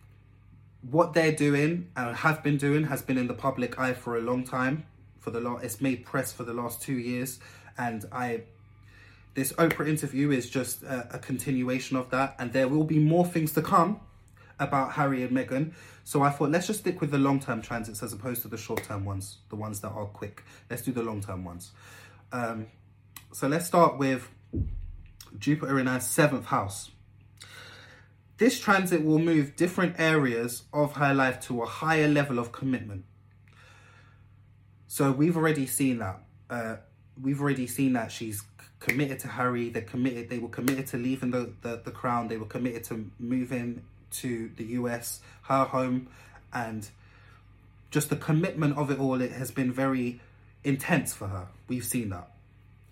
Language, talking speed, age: English, 175 wpm, 20-39